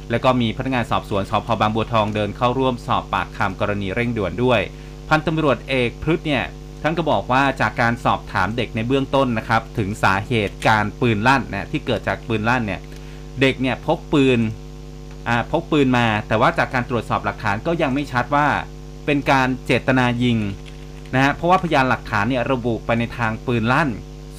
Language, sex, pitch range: Thai, male, 115-145 Hz